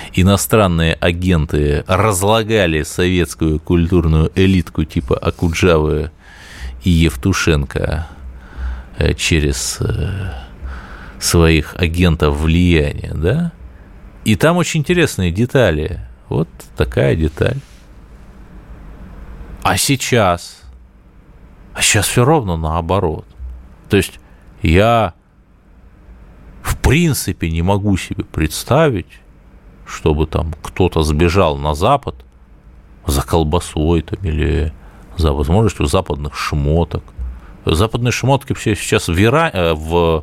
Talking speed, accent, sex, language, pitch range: 90 wpm, native, male, Russian, 75-95 Hz